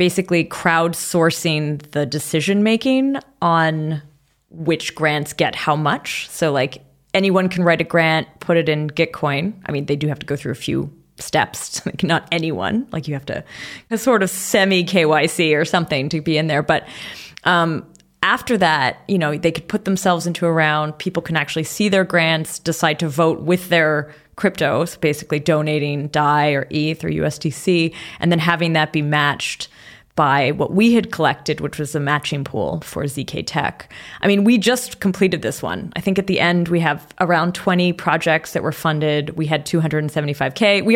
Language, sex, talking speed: English, female, 185 wpm